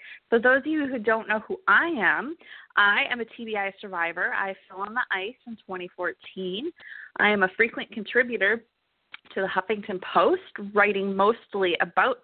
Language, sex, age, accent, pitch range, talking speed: English, female, 20-39, American, 190-250 Hz, 165 wpm